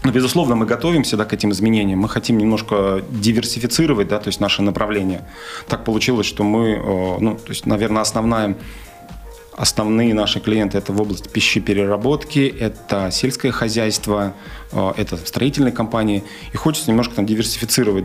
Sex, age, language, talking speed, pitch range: male, 30-49, Russian, 145 wpm, 100-115 Hz